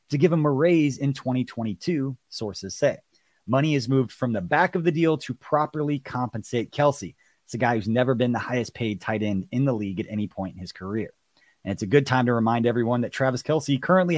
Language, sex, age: English, male, 30-49